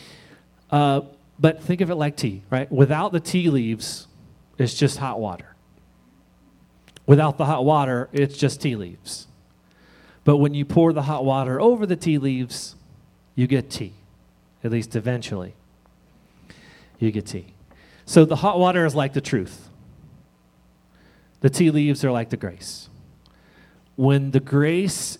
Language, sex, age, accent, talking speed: English, male, 40-59, American, 150 wpm